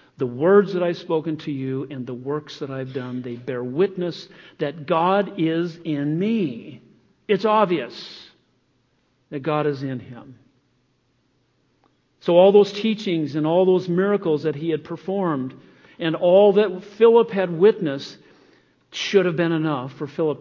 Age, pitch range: 50-69, 135-185 Hz